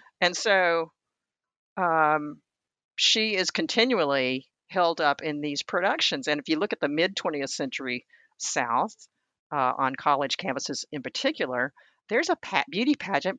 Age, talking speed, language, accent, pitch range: 50-69, 140 wpm, English, American, 145-190 Hz